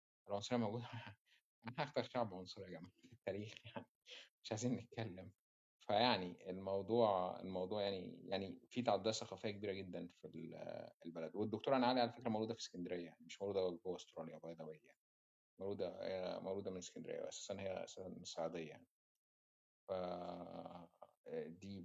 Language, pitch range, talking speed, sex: Arabic, 90-115 Hz, 135 wpm, male